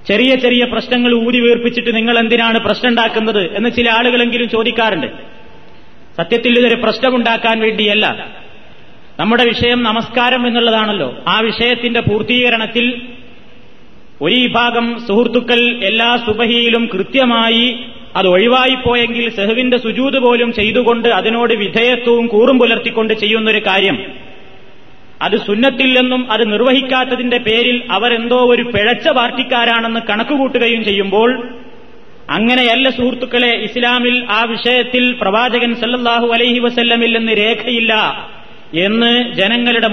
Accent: native